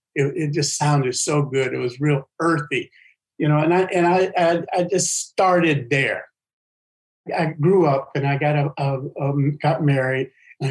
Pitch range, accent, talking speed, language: 135-165 Hz, American, 185 wpm, English